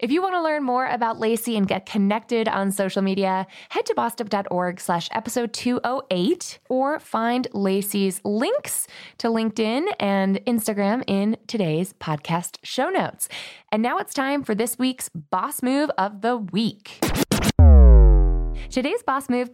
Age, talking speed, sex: 20-39, 145 wpm, female